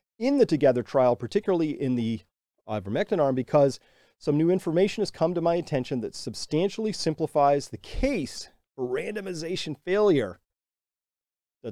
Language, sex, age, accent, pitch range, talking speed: English, male, 40-59, American, 120-175 Hz, 140 wpm